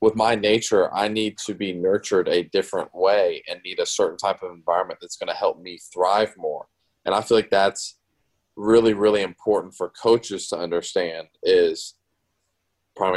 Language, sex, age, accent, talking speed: English, male, 20-39, American, 180 wpm